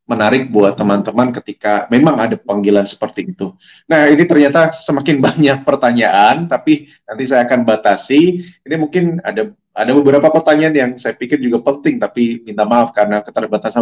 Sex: male